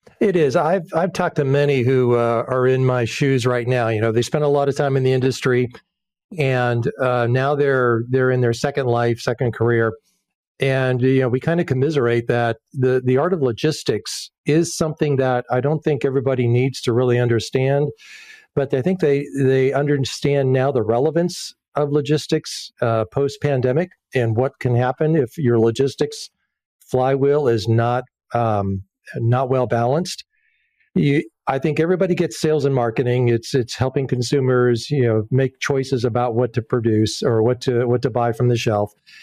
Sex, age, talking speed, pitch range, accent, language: male, 50-69, 180 wpm, 125-145 Hz, American, English